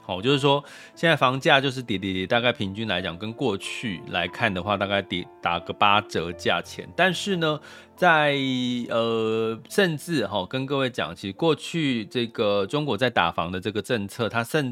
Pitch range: 105-140 Hz